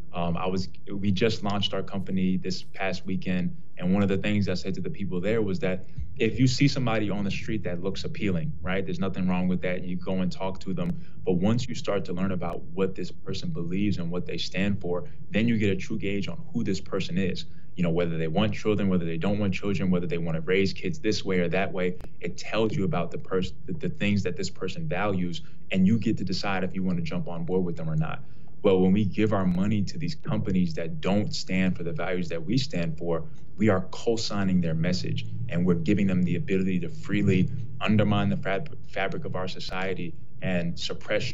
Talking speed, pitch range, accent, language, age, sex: 240 wpm, 90-100 Hz, American, English, 20-39, male